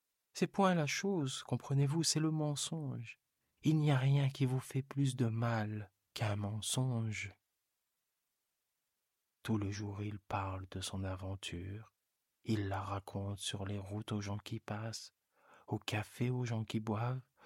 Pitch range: 100-120 Hz